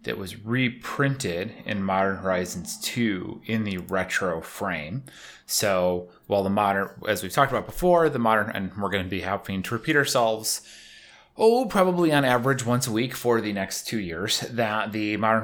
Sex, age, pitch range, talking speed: male, 30-49, 95-125 Hz, 180 wpm